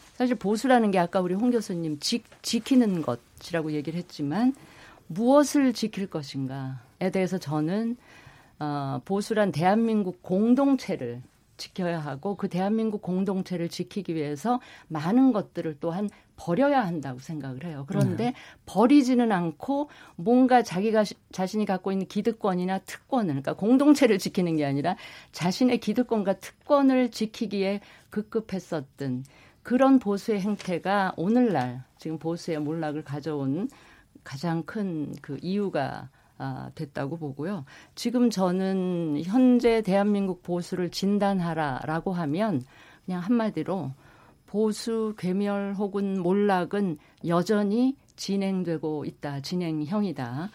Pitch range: 160-220 Hz